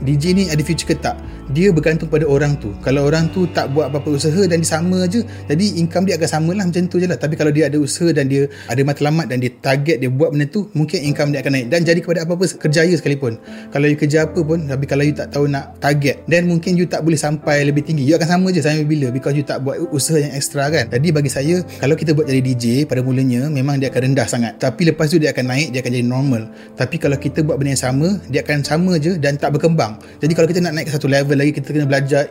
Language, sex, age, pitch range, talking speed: Malay, male, 30-49, 135-160 Hz, 265 wpm